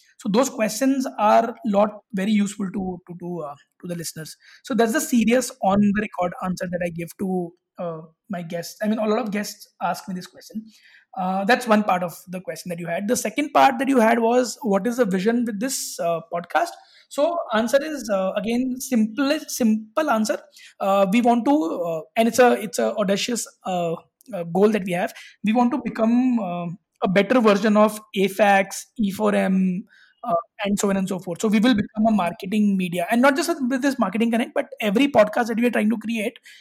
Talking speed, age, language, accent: 215 wpm, 20-39, English, Indian